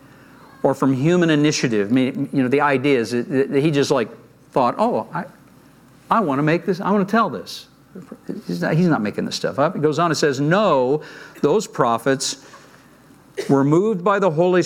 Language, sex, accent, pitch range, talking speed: English, male, American, 130-160 Hz, 200 wpm